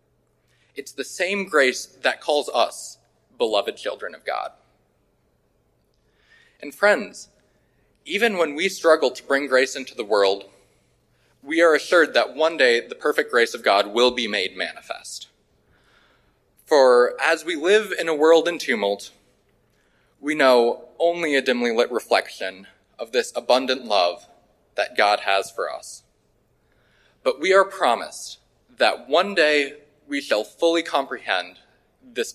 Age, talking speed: 20-39, 140 wpm